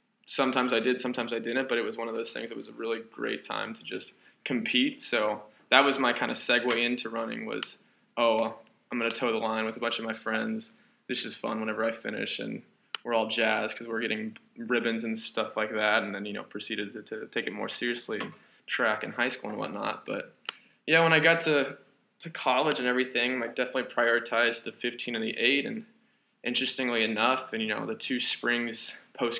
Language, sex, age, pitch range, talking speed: English, male, 20-39, 115-145 Hz, 220 wpm